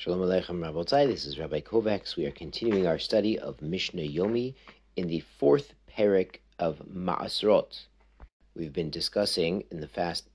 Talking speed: 150 wpm